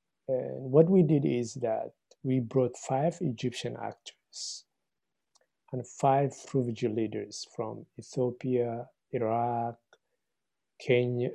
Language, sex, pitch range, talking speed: English, male, 120-145 Hz, 100 wpm